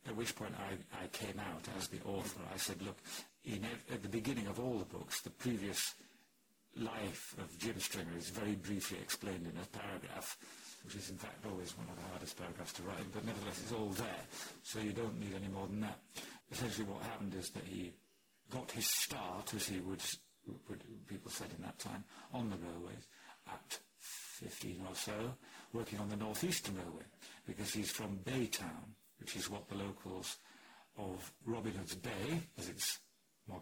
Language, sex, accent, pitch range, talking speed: English, male, British, 95-110 Hz, 185 wpm